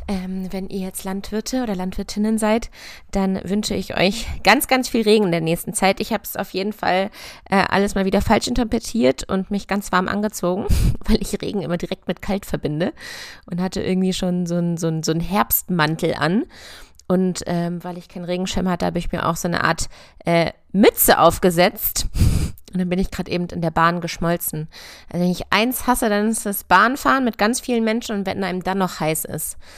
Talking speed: 205 wpm